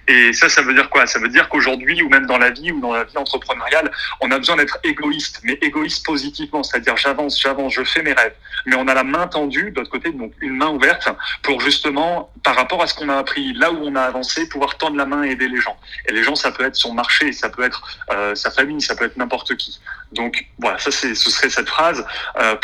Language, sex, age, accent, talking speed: French, male, 30-49, French, 260 wpm